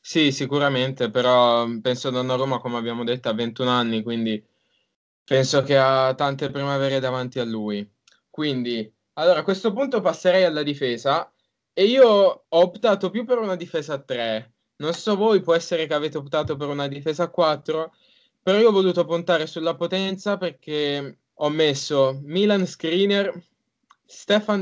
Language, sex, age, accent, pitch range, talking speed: Italian, male, 10-29, native, 140-180 Hz, 155 wpm